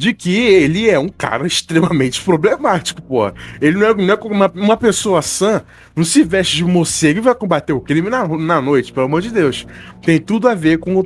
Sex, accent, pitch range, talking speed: male, Brazilian, 150-220 Hz, 220 wpm